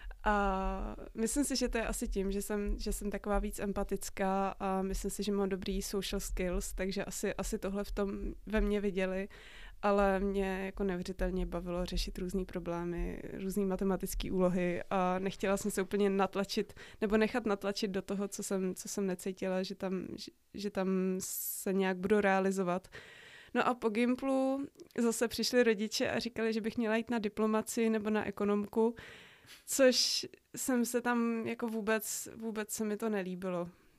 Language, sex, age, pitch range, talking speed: Czech, female, 20-39, 195-220 Hz, 170 wpm